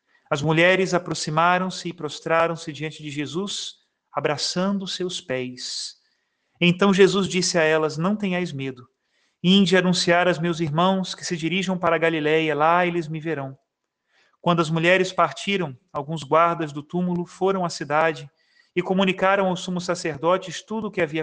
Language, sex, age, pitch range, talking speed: Portuguese, male, 40-59, 160-190 Hz, 155 wpm